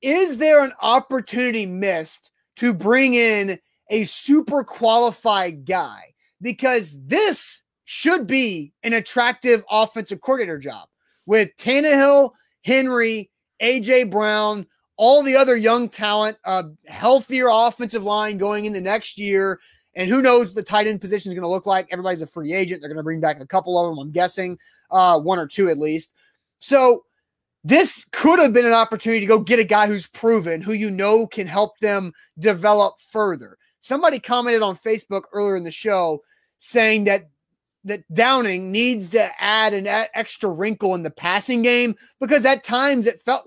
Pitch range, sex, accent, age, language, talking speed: 195-245 Hz, male, American, 30-49, English, 170 wpm